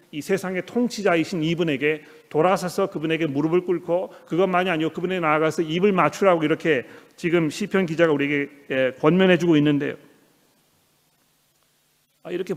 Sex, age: male, 40-59